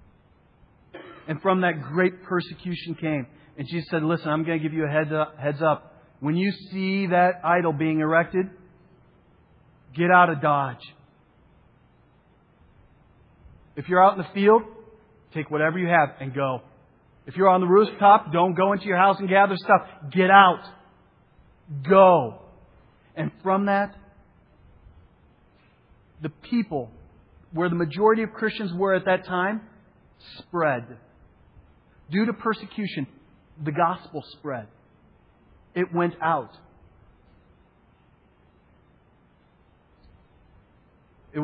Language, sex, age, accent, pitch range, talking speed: English, male, 40-59, American, 150-190 Hz, 120 wpm